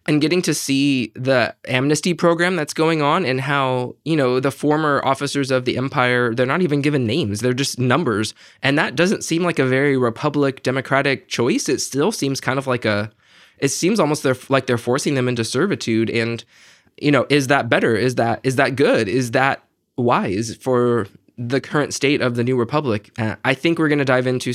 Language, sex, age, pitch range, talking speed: English, male, 20-39, 120-150 Hz, 210 wpm